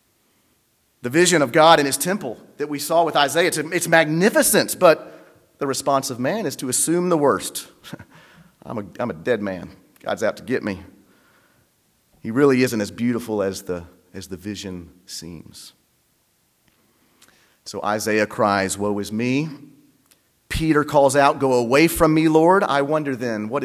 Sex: male